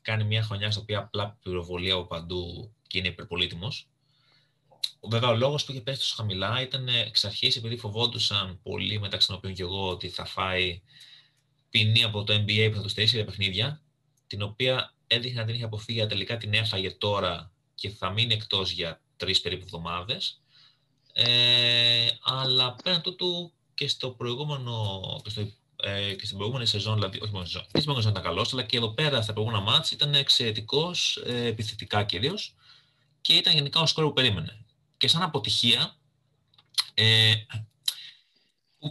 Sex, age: male, 30-49